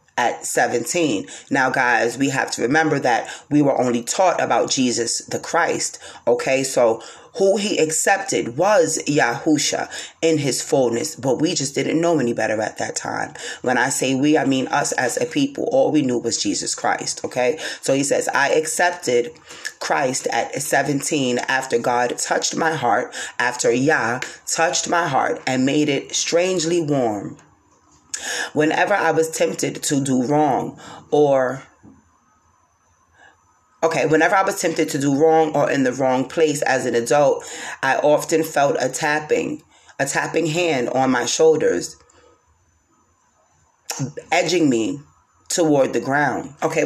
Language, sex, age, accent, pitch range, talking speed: English, female, 30-49, American, 130-160 Hz, 150 wpm